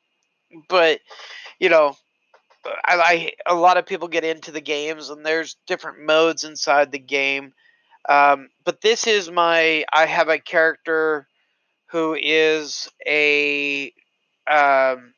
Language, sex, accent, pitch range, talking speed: English, male, American, 145-205 Hz, 130 wpm